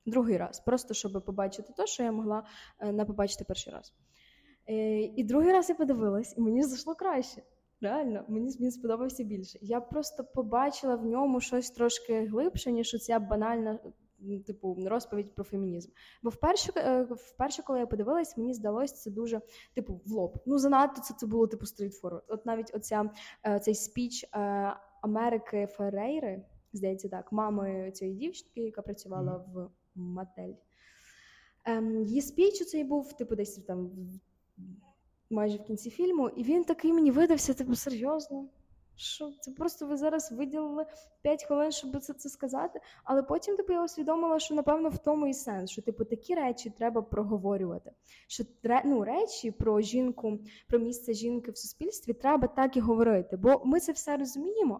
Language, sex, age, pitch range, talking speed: Ukrainian, female, 10-29, 210-280 Hz, 165 wpm